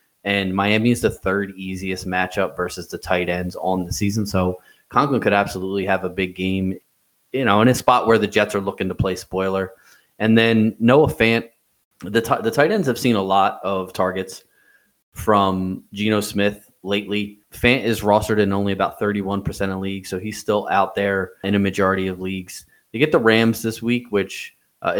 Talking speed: 195 wpm